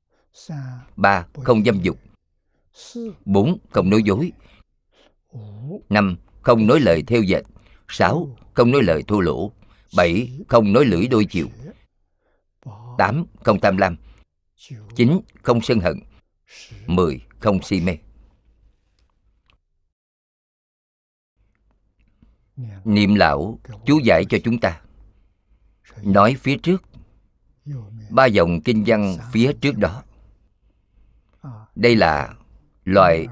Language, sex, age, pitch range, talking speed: Vietnamese, male, 50-69, 85-115 Hz, 105 wpm